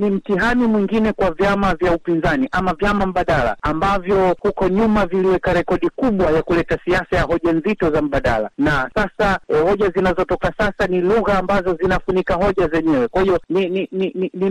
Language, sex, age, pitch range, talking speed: Swahili, male, 60-79, 165-195 Hz, 180 wpm